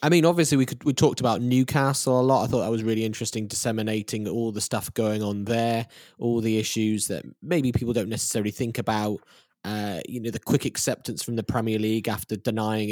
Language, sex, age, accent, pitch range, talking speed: English, male, 10-29, British, 110-130 Hz, 215 wpm